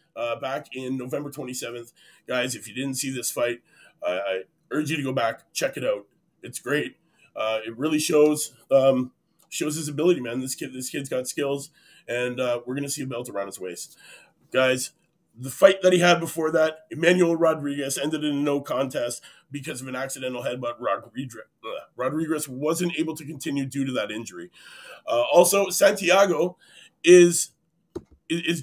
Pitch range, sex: 135-175 Hz, male